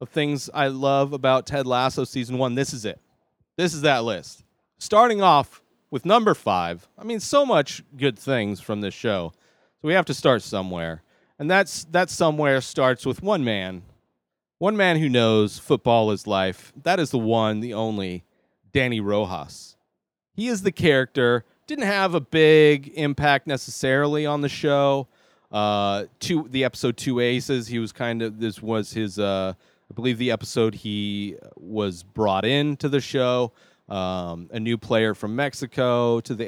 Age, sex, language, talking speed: 30-49, male, English, 170 wpm